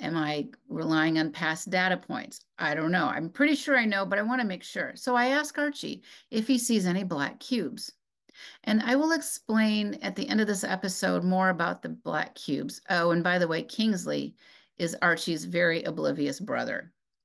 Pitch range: 155-245 Hz